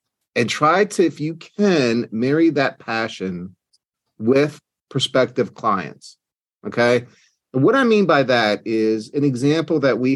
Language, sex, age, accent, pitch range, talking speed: English, male, 40-59, American, 110-155 Hz, 140 wpm